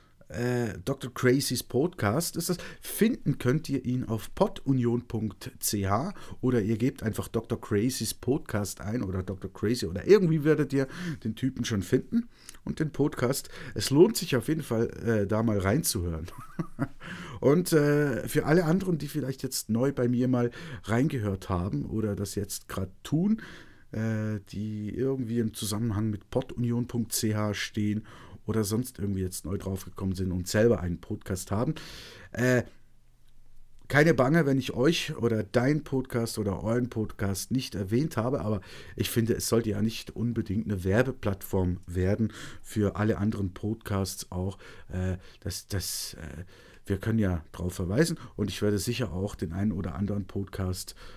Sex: male